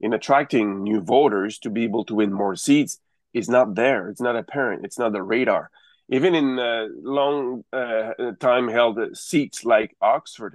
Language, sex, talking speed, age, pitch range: English, male, 170 wpm, 30-49, 115-140 Hz